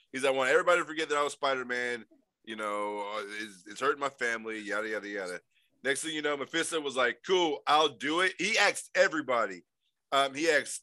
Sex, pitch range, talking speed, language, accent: male, 125-155 Hz, 210 wpm, English, American